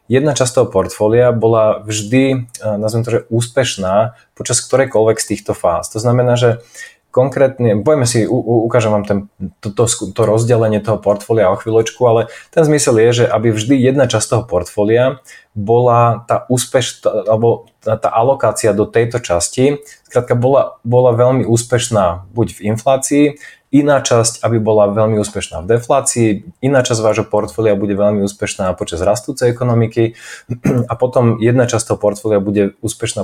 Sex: male